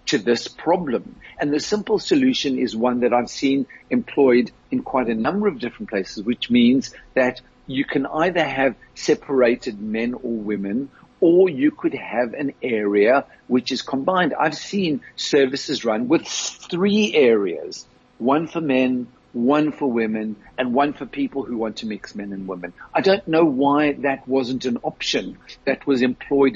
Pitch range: 120-200 Hz